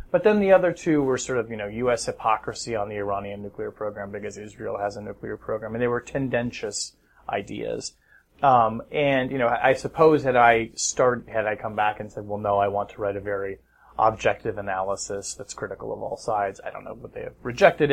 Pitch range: 105-135 Hz